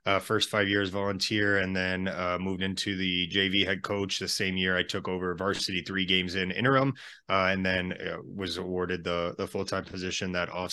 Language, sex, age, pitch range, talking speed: English, male, 20-39, 95-105 Hz, 215 wpm